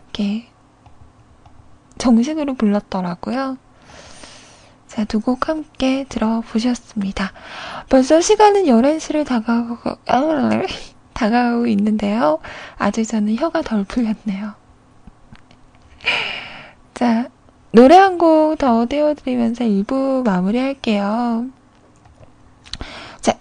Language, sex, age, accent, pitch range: Korean, female, 20-39, native, 220-310 Hz